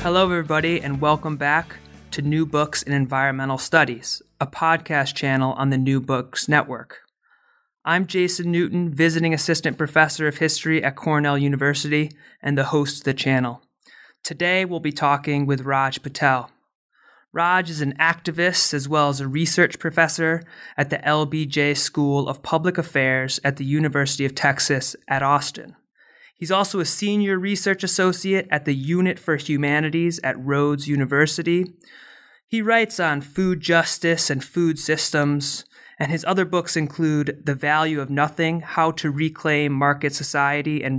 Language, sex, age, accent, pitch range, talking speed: English, male, 30-49, American, 140-170 Hz, 150 wpm